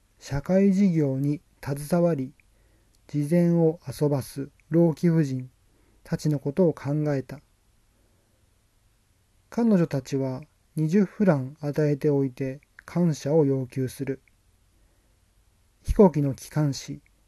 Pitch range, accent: 105-160 Hz, native